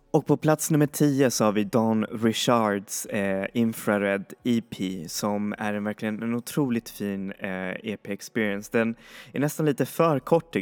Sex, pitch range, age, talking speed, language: male, 100-115 Hz, 20-39, 140 wpm, Swedish